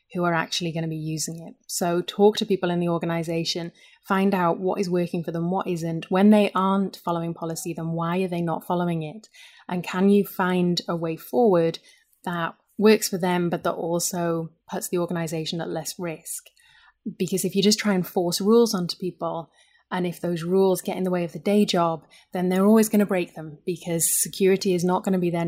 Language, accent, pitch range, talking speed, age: English, British, 170-190 Hz, 220 wpm, 30-49